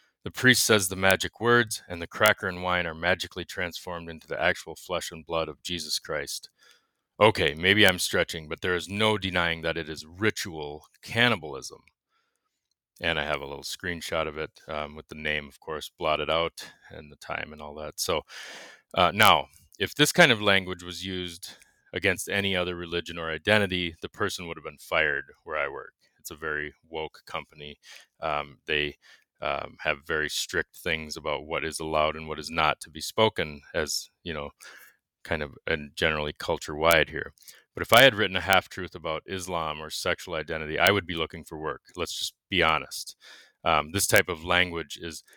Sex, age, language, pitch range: male, 30-49, English, 80-95 Hz